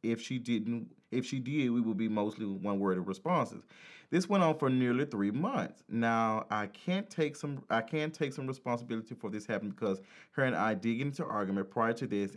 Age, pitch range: 30-49, 100-135 Hz